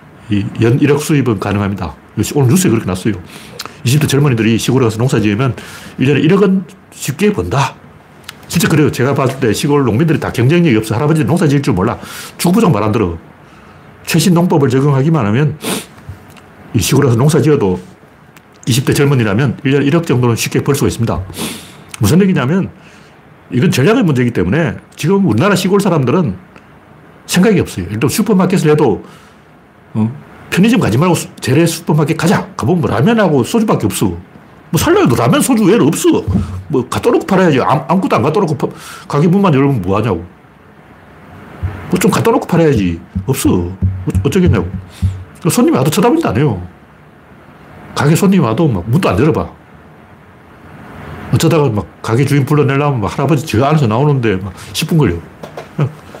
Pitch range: 110-160 Hz